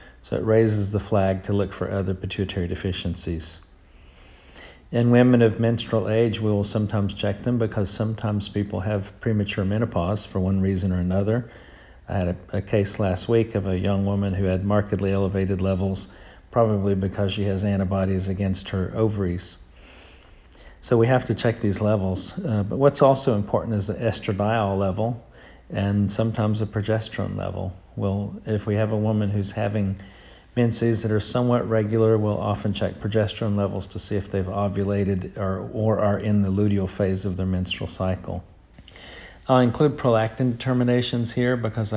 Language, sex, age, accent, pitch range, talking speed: English, male, 50-69, American, 95-110 Hz, 165 wpm